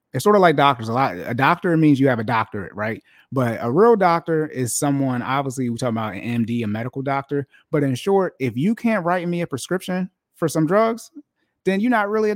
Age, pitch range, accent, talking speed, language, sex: 30-49, 120-155 Hz, American, 235 wpm, English, male